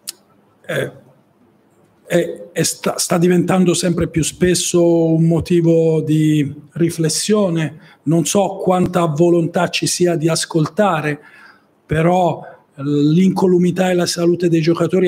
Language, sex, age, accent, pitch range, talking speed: Italian, male, 50-69, native, 165-185 Hz, 105 wpm